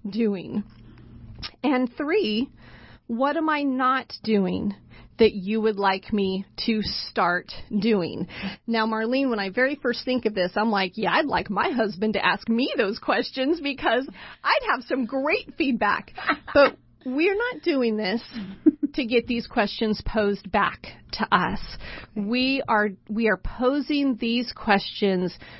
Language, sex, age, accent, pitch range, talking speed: English, female, 30-49, American, 195-245 Hz, 150 wpm